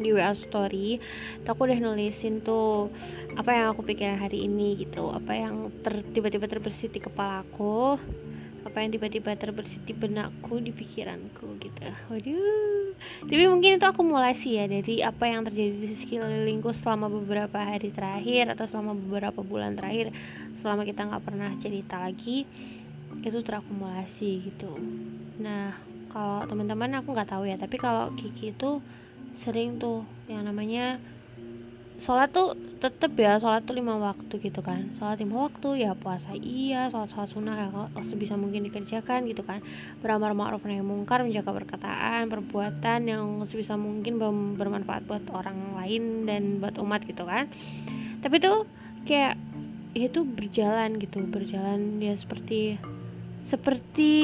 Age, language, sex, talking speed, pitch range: 20-39, Indonesian, female, 140 wpm, 200-235 Hz